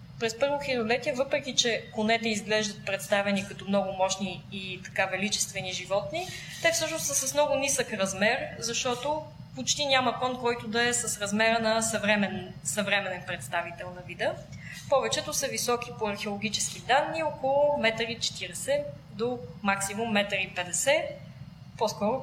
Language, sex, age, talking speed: Bulgarian, female, 20-39, 140 wpm